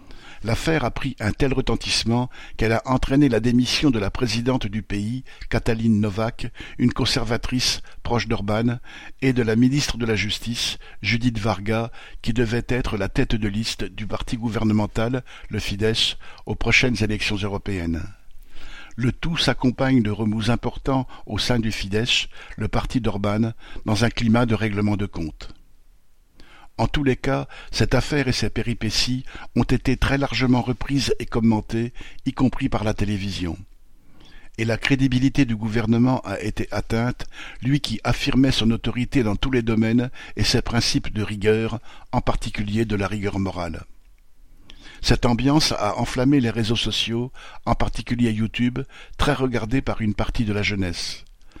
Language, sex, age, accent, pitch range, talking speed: French, male, 60-79, French, 105-125 Hz, 155 wpm